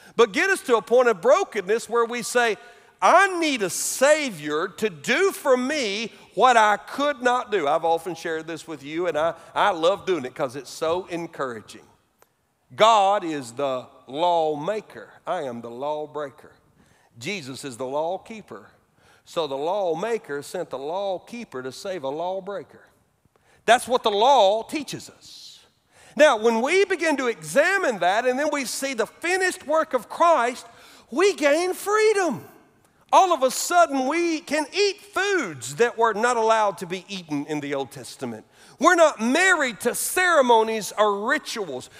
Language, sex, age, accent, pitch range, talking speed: English, male, 50-69, American, 190-290 Hz, 160 wpm